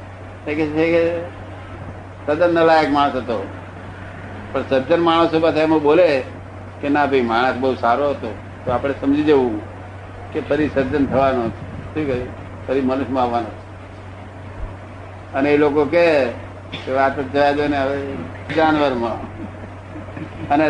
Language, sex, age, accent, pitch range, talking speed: Gujarati, male, 60-79, native, 100-150 Hz, 95 wpm